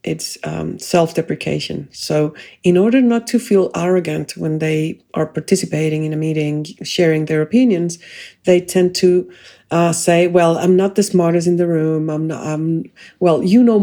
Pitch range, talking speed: 160-205 Hz, 170 wpm